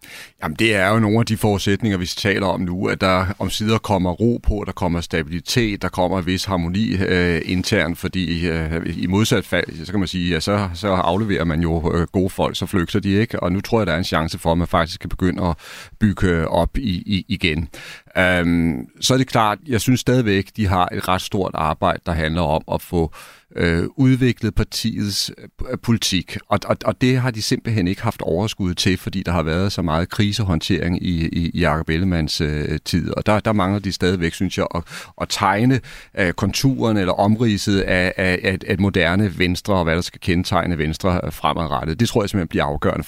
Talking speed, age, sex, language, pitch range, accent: 210 wpm, 40-59, male, Danish, 85-105 Hz, native